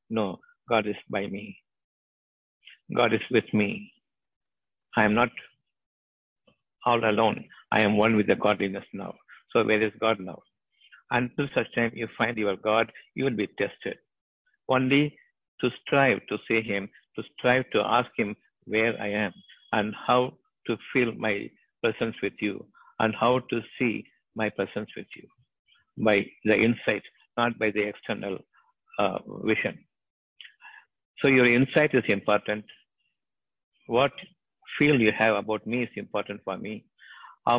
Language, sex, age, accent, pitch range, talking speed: Tamil, male, 60-79, native, 105-125 Hz, 145 wpm